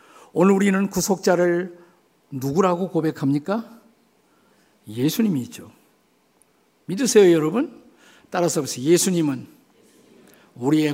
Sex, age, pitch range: male, 50-69, 145-195 Hz